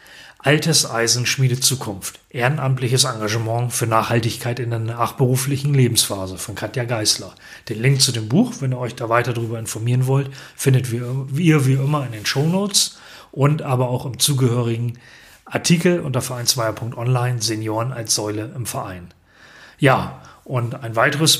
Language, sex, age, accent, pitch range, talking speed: German, male, 30-49, German, 110-135 Hz, 150 wpm